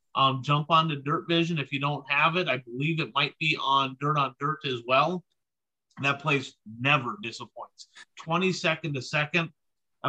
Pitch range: 135-170 Hz